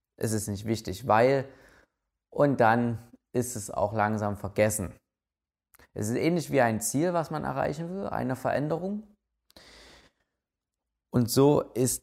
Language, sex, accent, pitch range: German, male, German, 100-145 Hz